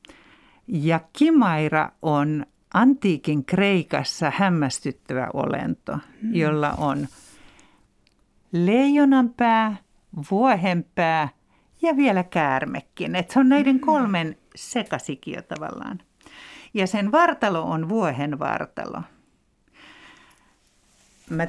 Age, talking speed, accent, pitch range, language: 60-79, 80 wpm, native, 150-225 Hz, Finnish